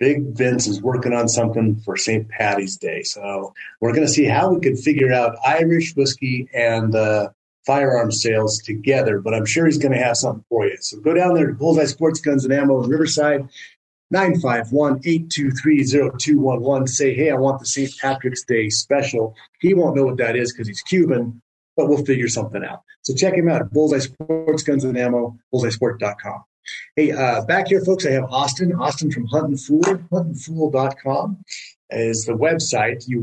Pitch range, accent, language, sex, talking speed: 115-150 Hz, American, English, male, 185 wpm